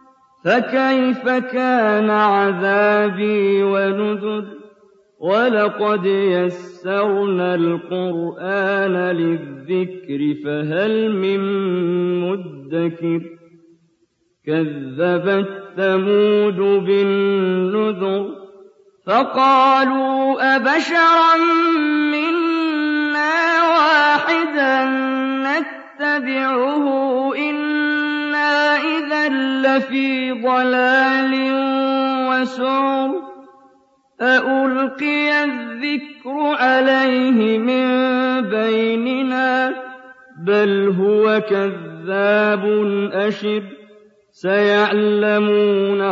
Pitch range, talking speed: 195-265 Hz, 40 wpm